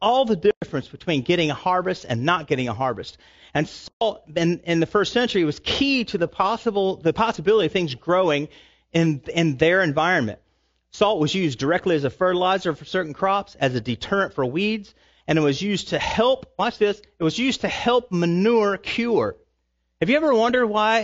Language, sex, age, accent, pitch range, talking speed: English, male, 40-59, American, 145-205 Hz, 195 wpm